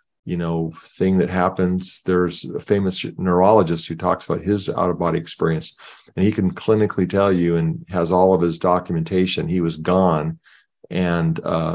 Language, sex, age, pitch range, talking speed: English, male, 50-69, 85-95 Hz, 160 wpm